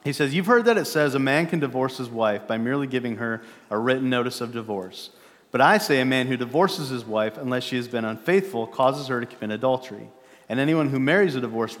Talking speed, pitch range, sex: 240 wpm, 115-140 Hz, male